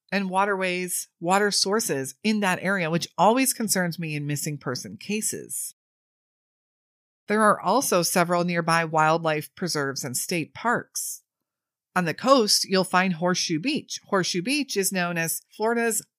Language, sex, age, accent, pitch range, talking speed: English, female, 30-49, American, 165-220 Hz, 140 wpm